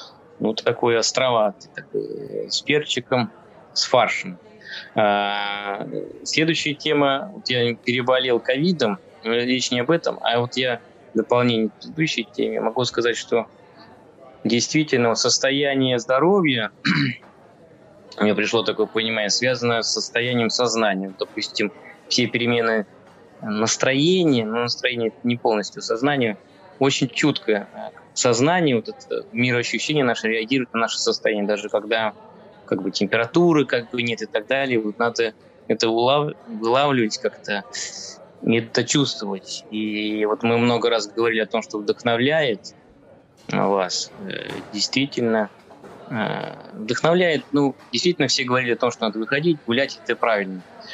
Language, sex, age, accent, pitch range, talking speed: Russian, male, 20-39, native, 110-135 Hz, 120 wpm